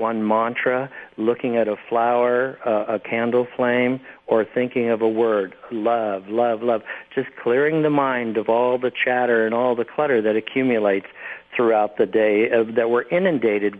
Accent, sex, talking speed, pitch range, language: American, male, 165 wpm, 110-125 Hz, English